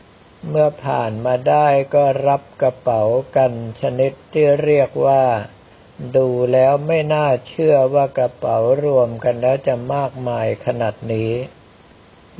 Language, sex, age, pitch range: Thai, male, 60-79, 120-140 Hz